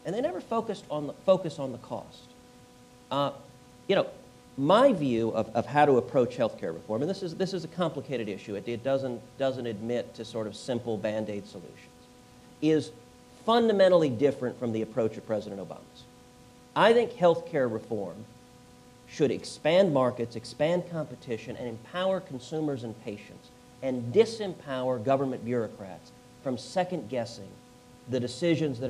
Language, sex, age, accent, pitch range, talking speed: English, male, 40-59, American, 120-165 Hz, 150 wpm